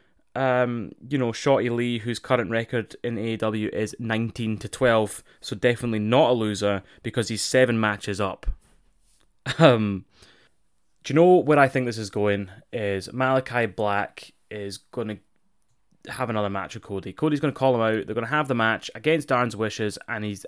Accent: British